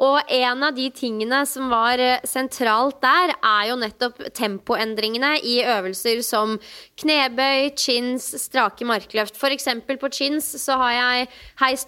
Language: English